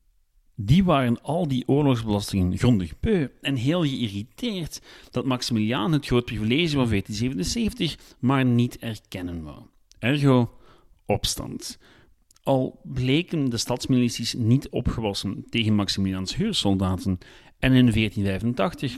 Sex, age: male, 40-59